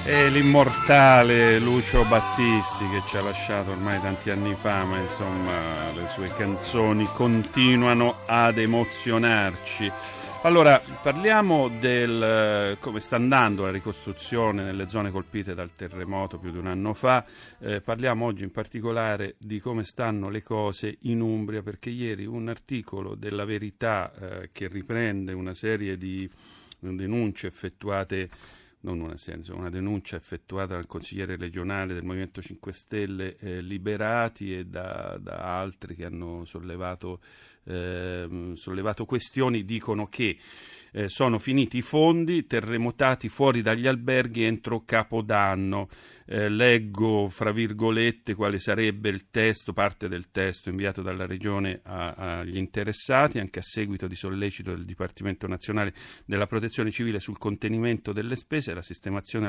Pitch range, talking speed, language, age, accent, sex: 95-115 Hz, 135 wpm, Italian, 40-59, native, male